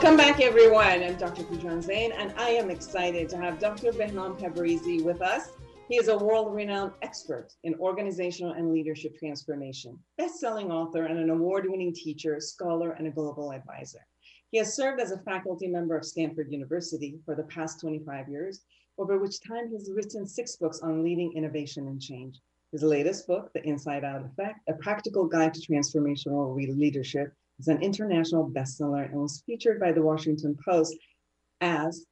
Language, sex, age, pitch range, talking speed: English, female, 40-59, 150-190 Hz, 170 wpm